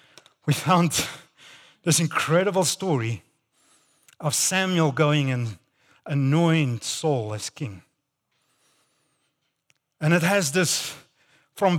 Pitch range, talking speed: 160-235 Hz, 90 wpm